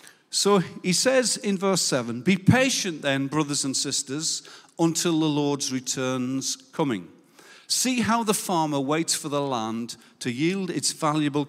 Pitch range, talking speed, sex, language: 130-185 Hz, 150 wpm, male, English